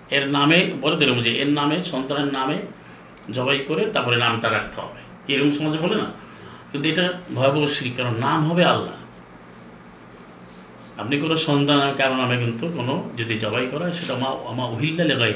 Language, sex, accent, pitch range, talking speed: Bengali, male, native, 115-155 Hz, 145 wpm